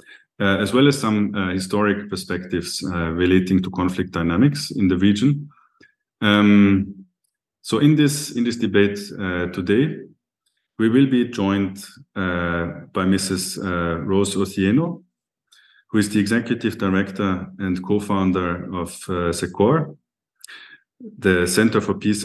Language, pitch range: English, 90-120 Hz